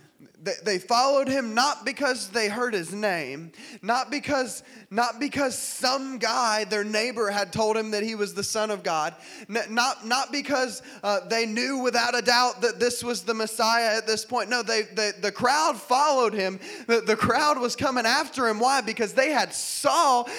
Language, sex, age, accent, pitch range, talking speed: English, male, 20-39, American, 215-285 Hz, 185 wpm